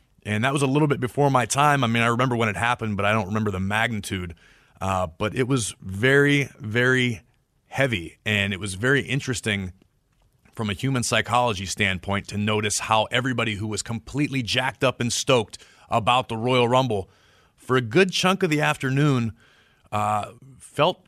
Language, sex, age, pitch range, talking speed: English, male, 30-49, 95-125 Hz, 180 wpm